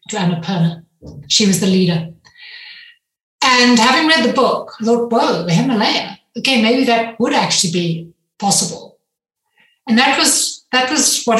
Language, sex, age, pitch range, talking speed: English, female, 60-79, 195-260 Hz, 140 wpm